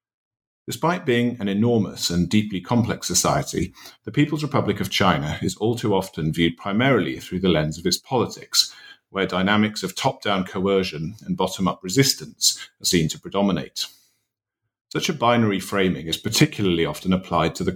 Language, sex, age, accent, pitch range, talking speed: English, male, 40-59, British, 95-120 Hz, 160 wpm